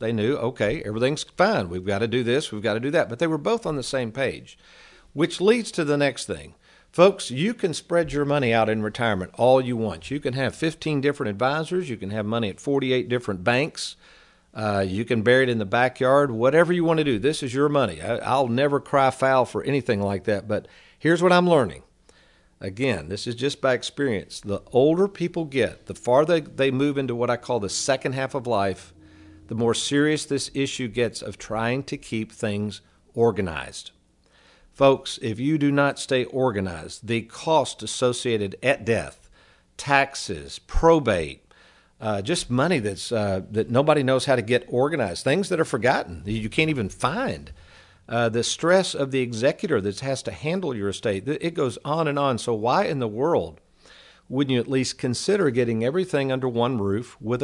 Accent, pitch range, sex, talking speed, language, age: American, 110-145 Hz, male, 195 wpm, English, 50-69